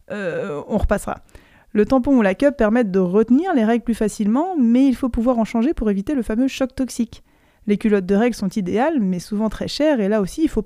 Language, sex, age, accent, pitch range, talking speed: French, female, 20-39, French, 200-245 Hz, 235 wpm